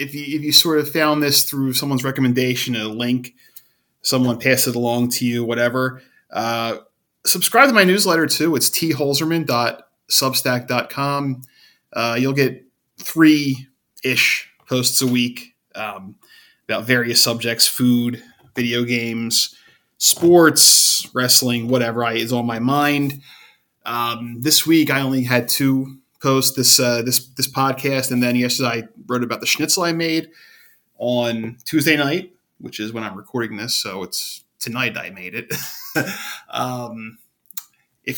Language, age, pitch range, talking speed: English, 20-39, 120-145 Hz, 140 wpm